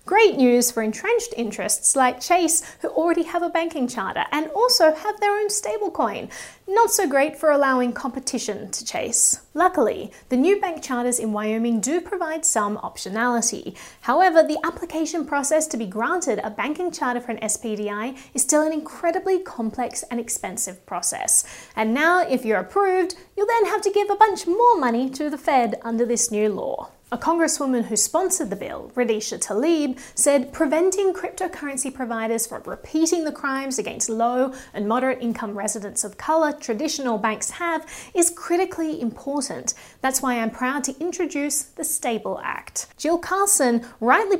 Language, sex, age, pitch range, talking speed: English, female, 30-49, 235-340 Hz, 165 wpm